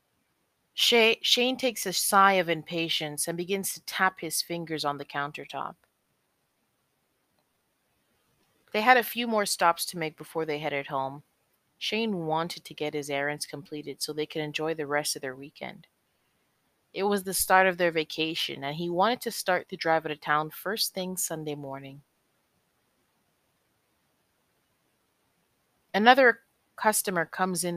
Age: 30-49